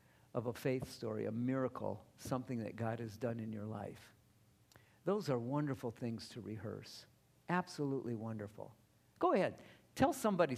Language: English